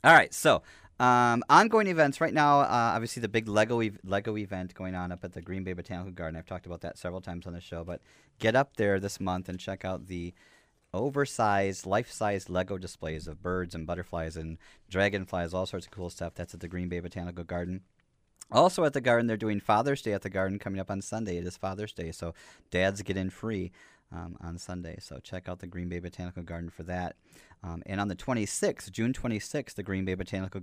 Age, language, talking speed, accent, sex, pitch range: 30-49, English, 220 wpm, American, male, 85-105 Hz